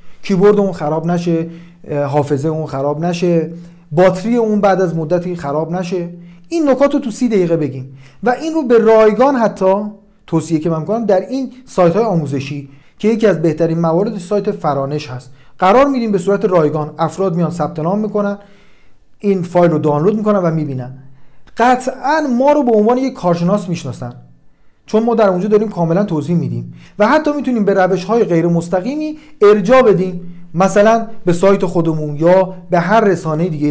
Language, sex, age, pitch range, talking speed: Persian, male, 40-59, 160-225 Hz, 175 wpm